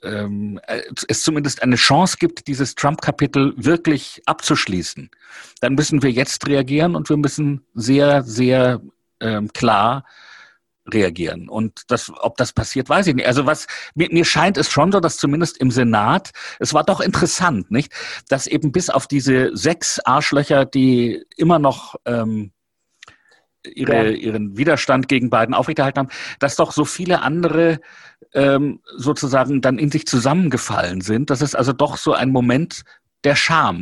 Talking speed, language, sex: 155 wpm, German, male